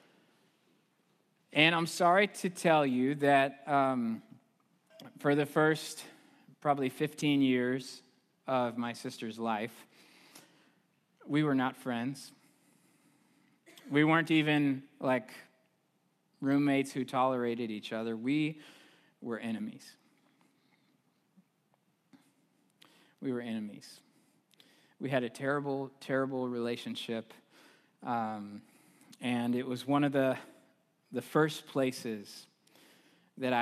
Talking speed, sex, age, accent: 95 wpm, male, 20-39, American